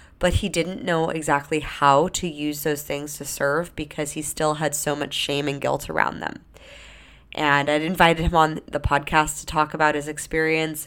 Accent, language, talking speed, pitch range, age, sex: American, English, 195 wpm, 140-170 Hz, 20-39, female